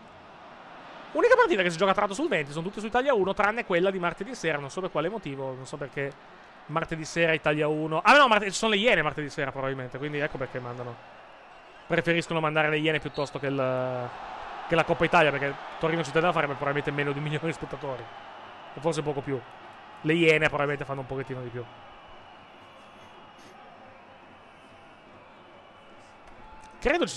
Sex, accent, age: male, native, 30-49